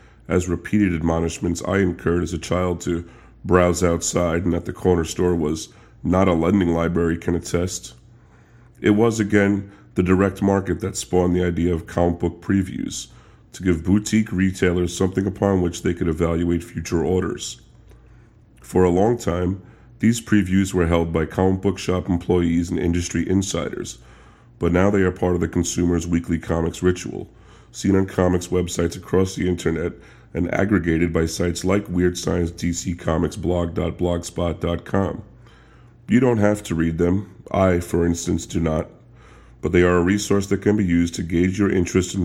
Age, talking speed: 40-59, 160 wpm